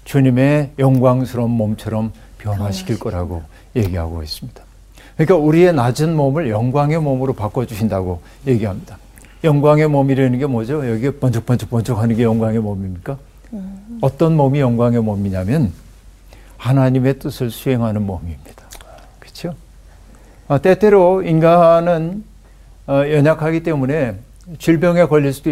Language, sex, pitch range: Korean, male, 110-150 Hz